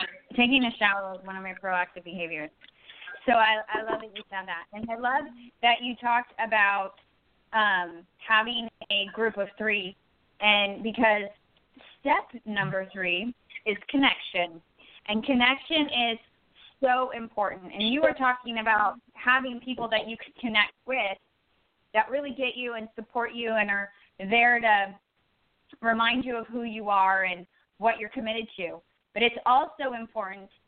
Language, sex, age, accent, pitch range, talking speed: English, female, 20-39, American, 200-235 Hz, 155 wpm